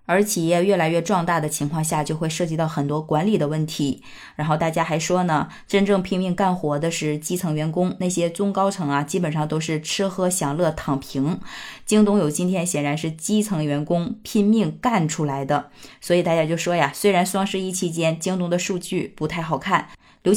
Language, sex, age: Chinese, female, 20-39